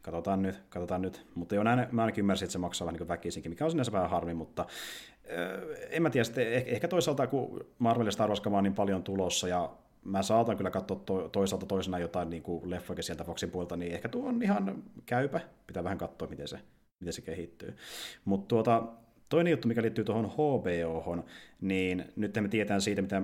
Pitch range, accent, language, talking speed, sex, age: 90-105 Hz, native, Finnish, 190 wpm, male, 30-49